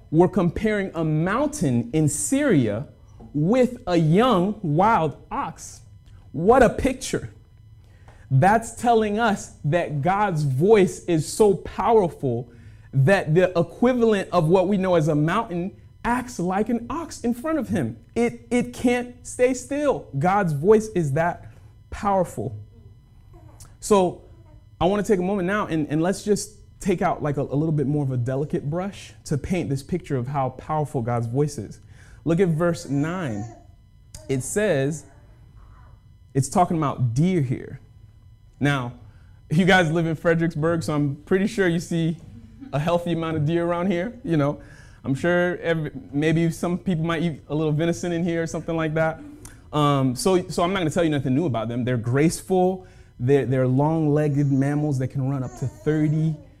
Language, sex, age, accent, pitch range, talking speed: English, male, 30-49, American, 125-185 Hz, 165 wpm